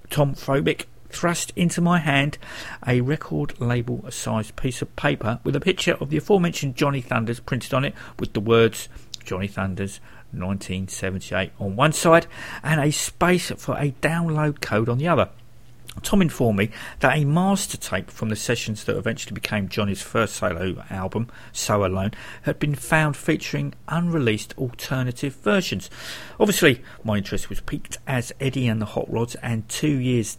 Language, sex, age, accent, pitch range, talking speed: English, male, 50-69, British, 110-145 Hz, 165 wpm